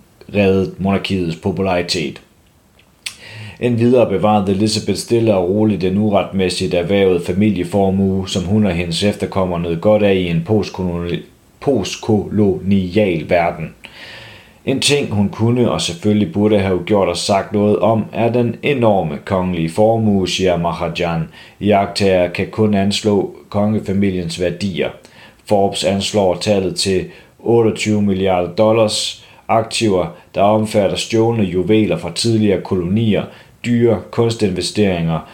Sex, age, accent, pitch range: male, 30-49, native, 90-105 Hz